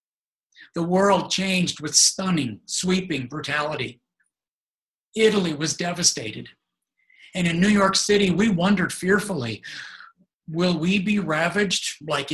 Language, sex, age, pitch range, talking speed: English, male, 50-69, 140-185 Hz, 110 wpm